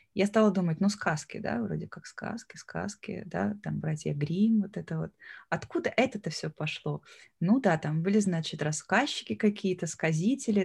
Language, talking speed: Russian, 165 wpm